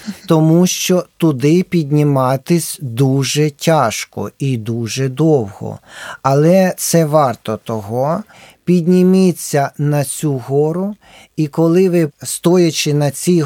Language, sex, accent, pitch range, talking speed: Ukrainian, male, native, 145-185 Hz, 105 wpm